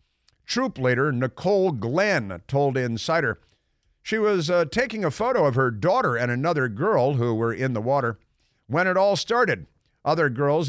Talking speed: 165 wpm